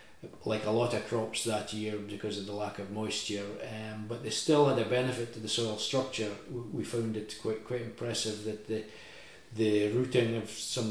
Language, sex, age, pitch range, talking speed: English, male, 40-59, 105-120 Hz, 200 wpm